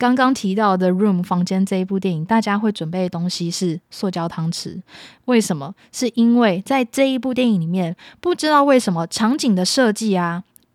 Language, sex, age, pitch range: Chinese, female, 20-39, 180-230 Hz